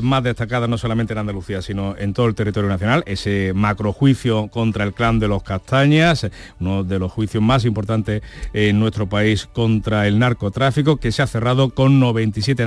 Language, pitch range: Spanish, 110-135 Hz